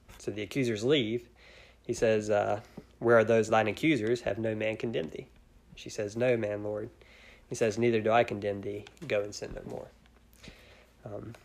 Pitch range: 105-125 Hz